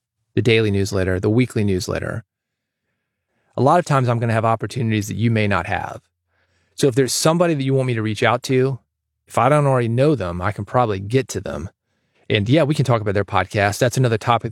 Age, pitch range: 30-49, 105-135 Hz